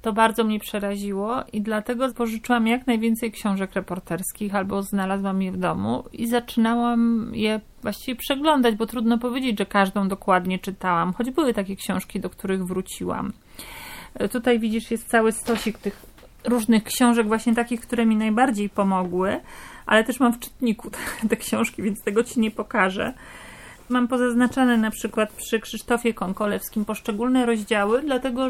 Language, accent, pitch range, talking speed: Polish, native, 210-250 Hz, 150 wpm